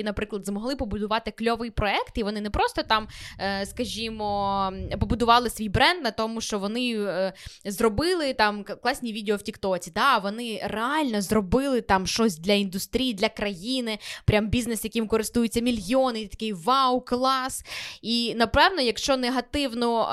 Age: 20-39